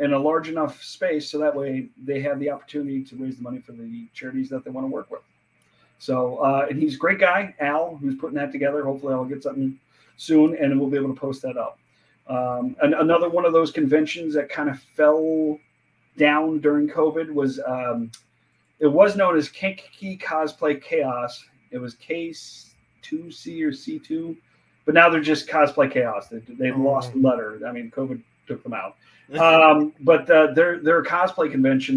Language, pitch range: English, 135-160 Hz